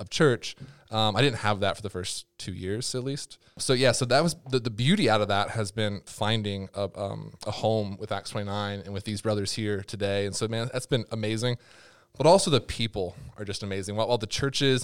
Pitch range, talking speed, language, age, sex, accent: 105-125 Hz, 240 wpm, English, 20-39, male, American